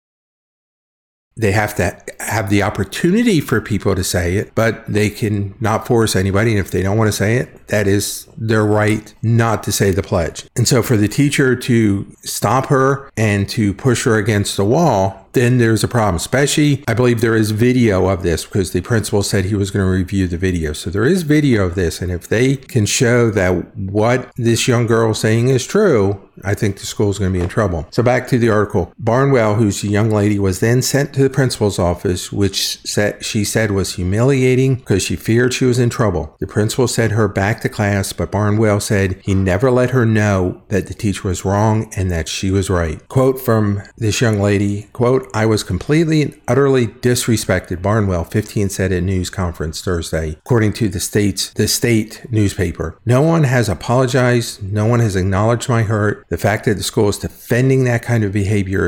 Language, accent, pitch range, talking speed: English, American, 100-125 Hz, 210 wpm